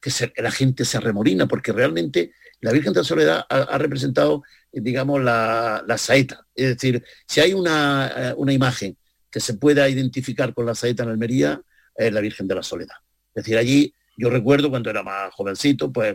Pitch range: 115-140 Hz